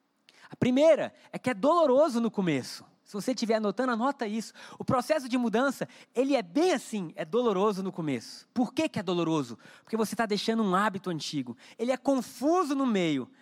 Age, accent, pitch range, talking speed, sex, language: 20-39, Brazilian, 215-280 Hz, 190 wpm, male, Portuguese